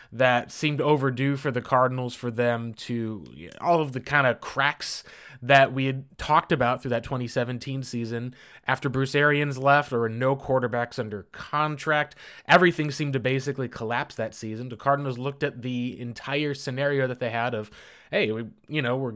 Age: 20-39